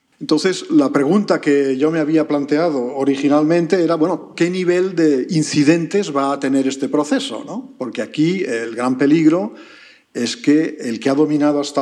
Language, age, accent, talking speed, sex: Spanish, 50-69, Spanish, 170 wpm, male